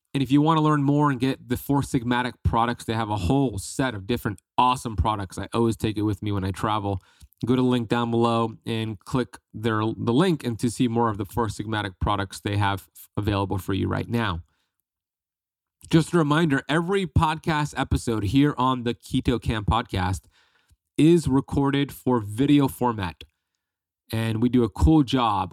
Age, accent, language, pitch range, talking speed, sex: 30-49, American, English, 105-135 Hz, 190 wpm, male